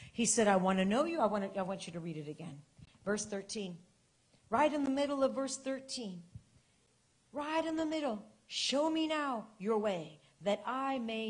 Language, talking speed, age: English, 190 wpm, 40-59